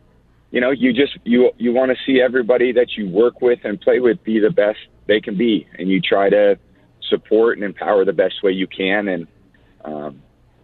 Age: 30-49